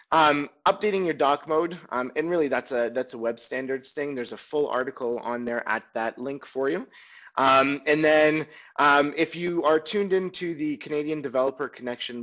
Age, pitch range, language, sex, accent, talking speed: 30-49, 115-150 Hz, English, male, American, 190 wpm